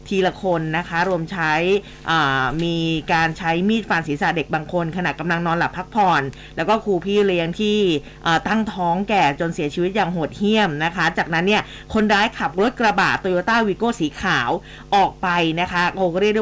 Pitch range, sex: 175-215 Hz, female